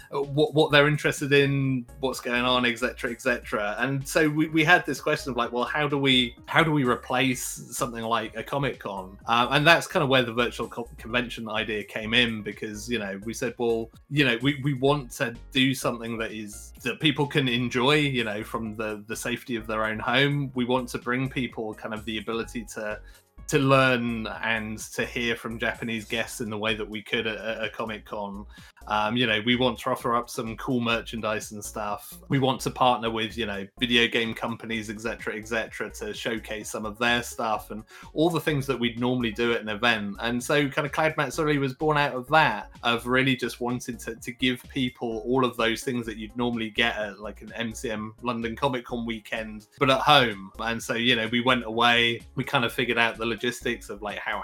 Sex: male